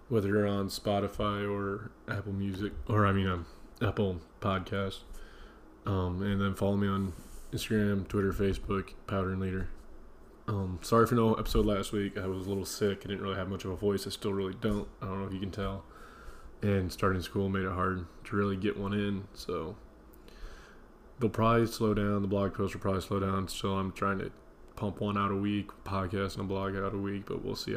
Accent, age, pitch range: American, 20-39, 95-105 Hz